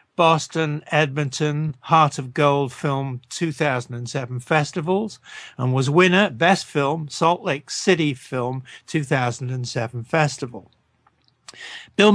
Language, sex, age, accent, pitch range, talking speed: English, male, 50-69, British, 130-170 Hz, 100 wpm